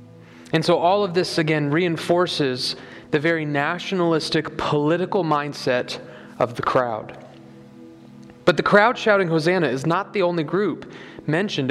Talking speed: 135 wpm